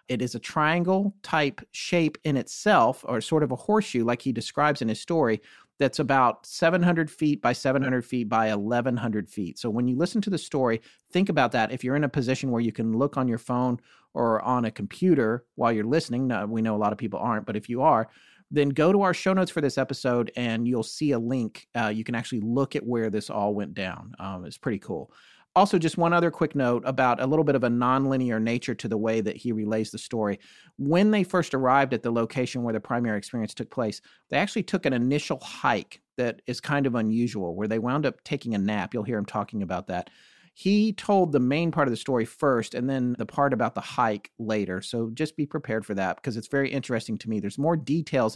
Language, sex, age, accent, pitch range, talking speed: English, male, 40-59, American, 110-145 Hz, 235 wpm